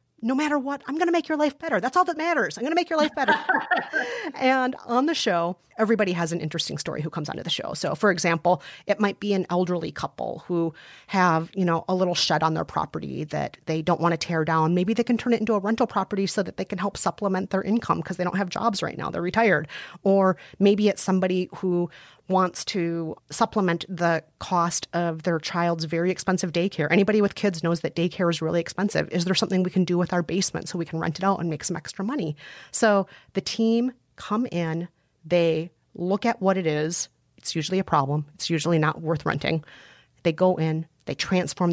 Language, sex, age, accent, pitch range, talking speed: English, female, 30-49, American, 160-200 Hz, 235 wpm